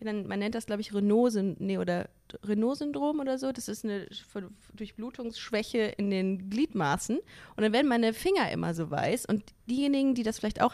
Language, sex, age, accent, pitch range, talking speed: German, female, 30-49, German, 200-240 Hz, 180 wpm